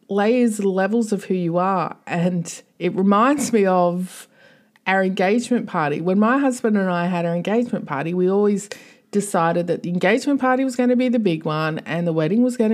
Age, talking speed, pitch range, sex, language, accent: 30-49, 200 wpm, 170-225 Hz, female, English, Australian